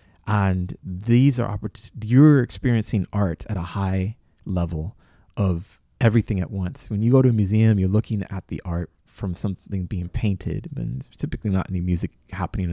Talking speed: 165 wpm